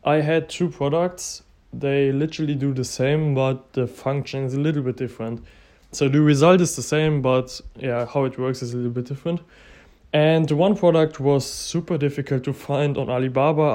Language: English